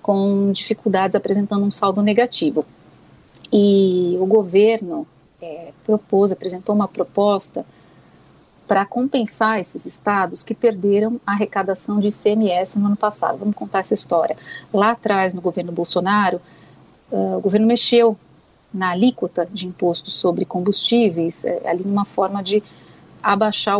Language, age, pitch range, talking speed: Portuguese, 40-59, 185-220 Hz, 125 wpm